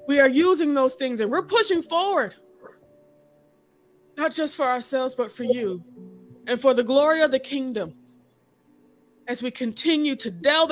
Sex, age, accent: female, 20-39, American